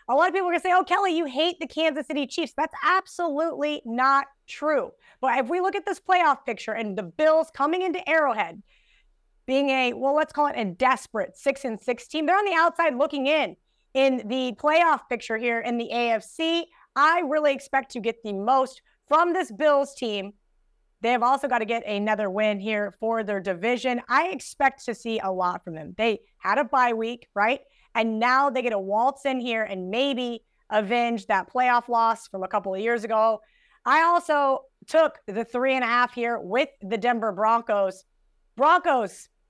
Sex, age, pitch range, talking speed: female, 30-49, 225-290 Hz, 200 wpm